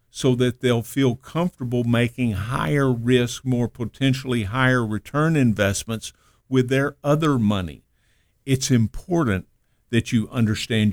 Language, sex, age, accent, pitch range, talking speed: English, male, 50-69, American, 115-135 Hz, 120 wpm